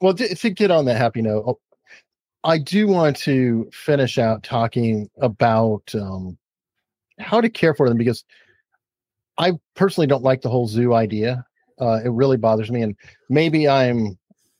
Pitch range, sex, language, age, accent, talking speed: 115-140 Hz, male, English, 40-59, American, 155 wpm